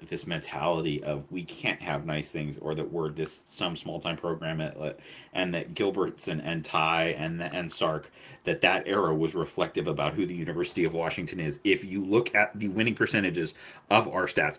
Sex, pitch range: male, 80-105 Hz